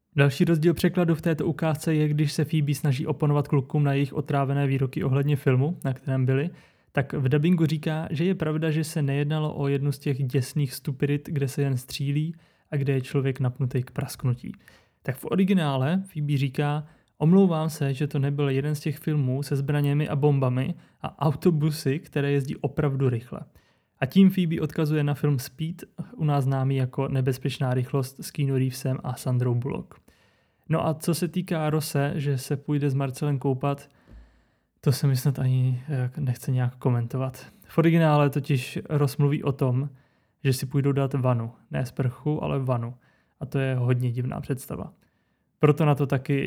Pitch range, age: 130-150 Hz, 20-39